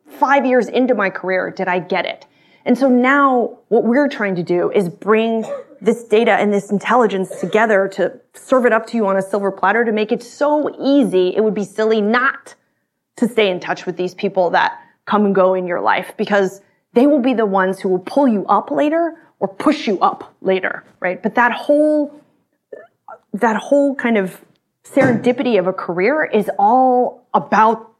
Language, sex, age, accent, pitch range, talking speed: English, female, 30-49, American, 195-250 Hz, 195 wpm